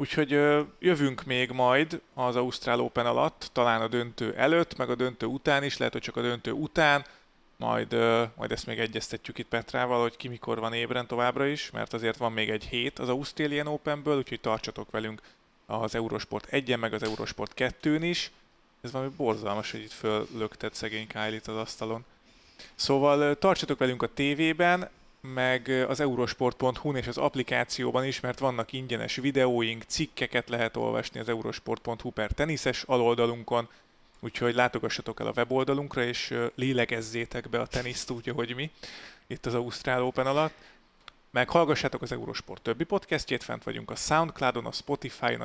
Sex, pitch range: male, 115-140 Hz